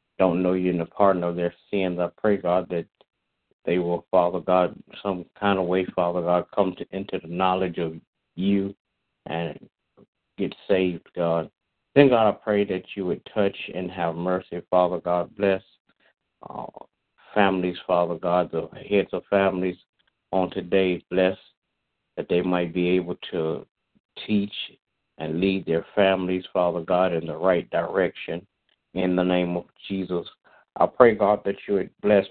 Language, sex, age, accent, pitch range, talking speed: English, male, 60-79, American, 85-95 Hz, 165 wpm